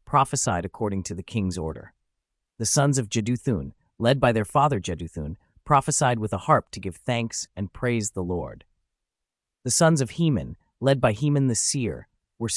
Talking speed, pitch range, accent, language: 170 wpm, 100-125 Hz, American, English